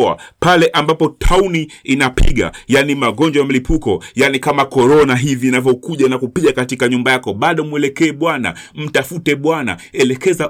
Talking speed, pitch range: 135 wpm, 125-150 Hz